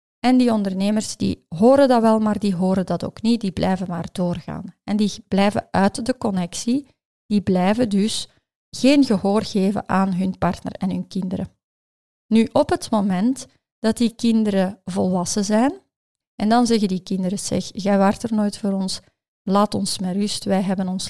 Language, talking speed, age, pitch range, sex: Dutch, 180 wpm, 30-49, 185-210 Hz, female